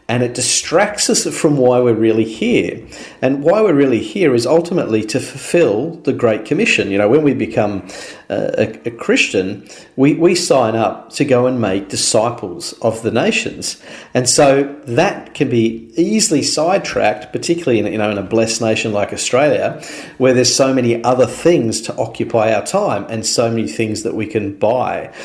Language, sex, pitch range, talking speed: English, male, 110-140 Hz, 185 wpm